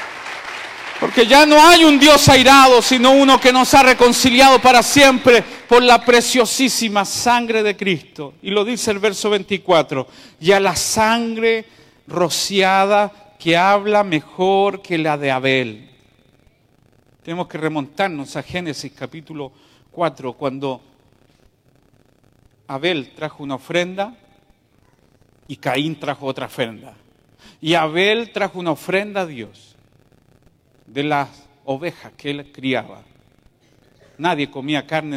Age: 50-69